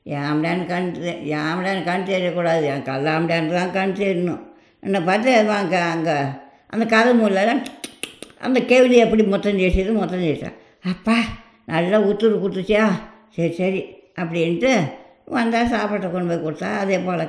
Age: 60-79